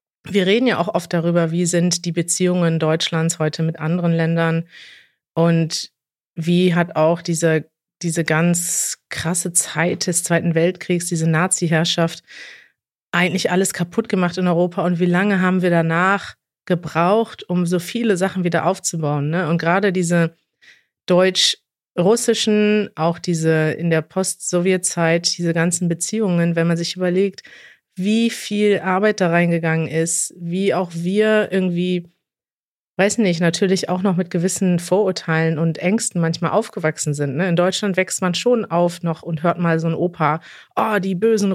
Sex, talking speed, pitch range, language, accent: female, 150 wpm, 170-195 Hz, German, German